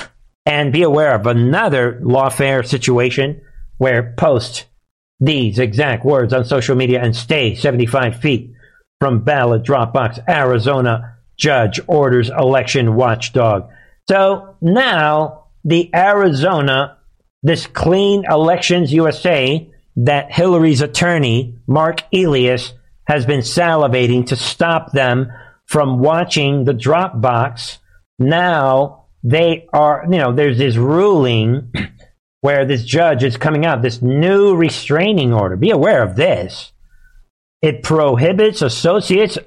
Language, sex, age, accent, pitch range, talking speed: English, male, 50-69, American, 125-170 Hz, 115 wpm